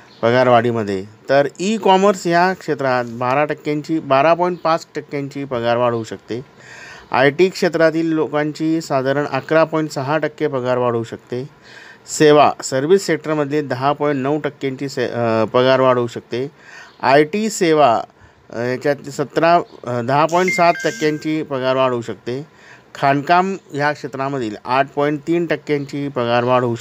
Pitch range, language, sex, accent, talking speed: 125-160 Hz, Marathi, male, native, 110 wpm